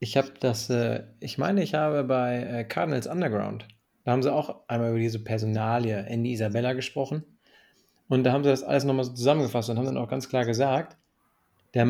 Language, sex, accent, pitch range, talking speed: German, male, German, 120-140 Hz, 190 wpm